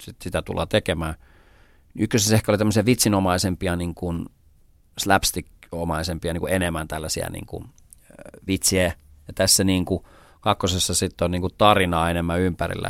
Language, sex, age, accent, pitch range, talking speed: Finnish, male, 40-59, native, 85-105 Hz, 135 wpm